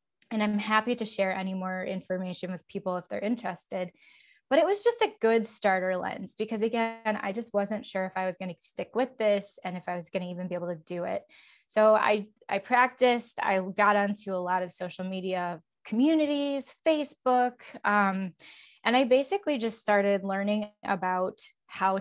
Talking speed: 190 wpm